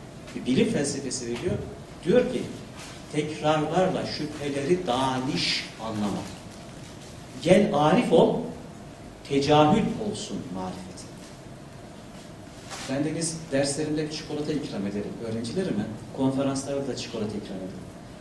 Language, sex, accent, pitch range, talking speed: Turkish, male, native, 120-175 Hz, 80 wpm